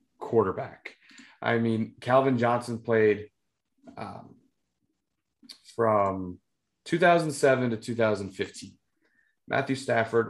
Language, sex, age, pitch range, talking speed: English, male, 30-49, 105-135 Hz, 75 wpm